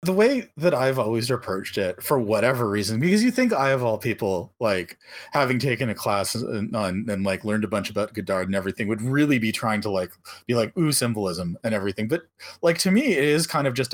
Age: 30-49